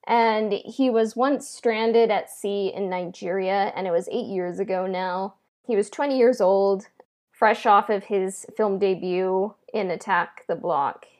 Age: 10-29